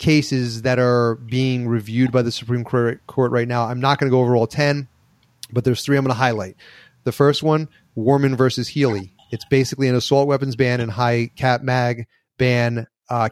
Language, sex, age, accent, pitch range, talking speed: English, male, 30-49, American, 115-140 Hz, 200 wpm